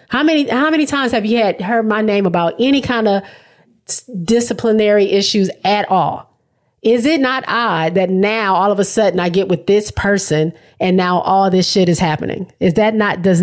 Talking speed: 200 wpm